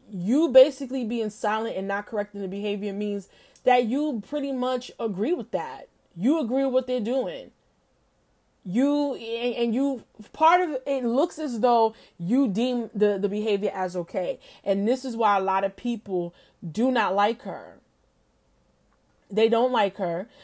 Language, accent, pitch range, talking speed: English, American, 205-250 Hz, 160 wpm